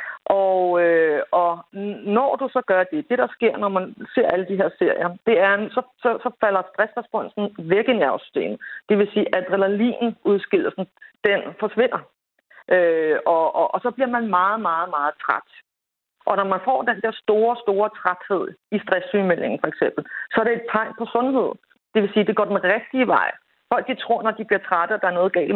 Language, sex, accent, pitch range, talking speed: Danish, female, native, 185-245 Hz, 200 wpm